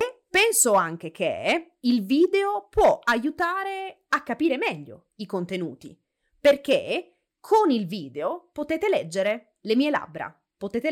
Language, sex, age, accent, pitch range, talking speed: Italian, female, 30-49, native, 195-310 Hz, 120 wpm